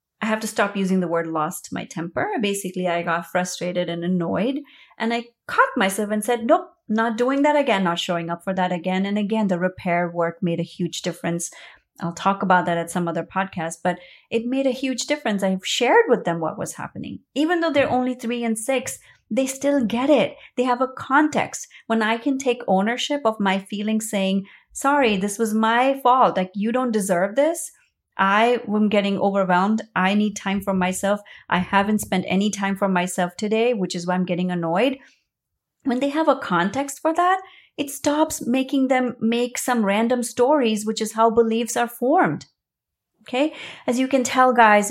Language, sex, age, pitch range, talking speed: English, female, 30-49, 185-250 Hz, 195 wpm